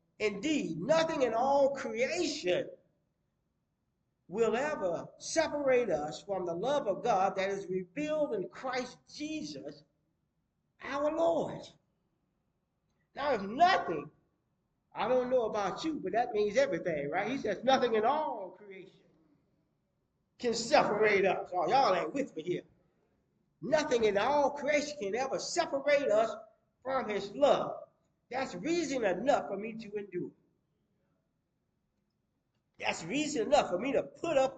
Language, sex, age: English, male, 50-69